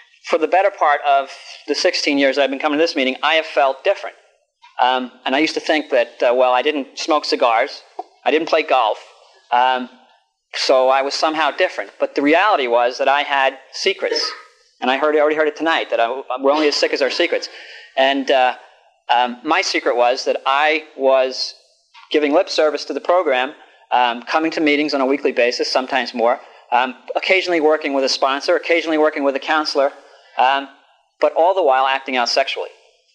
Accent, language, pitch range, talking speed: American, English, 130-160 Hz, 200 wpm